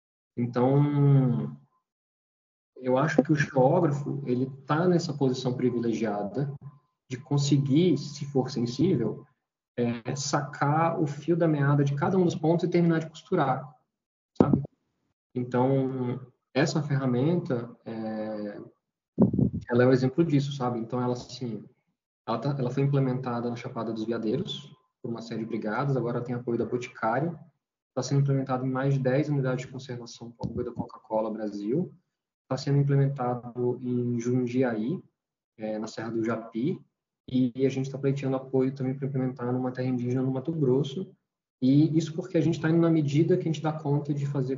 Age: 20-39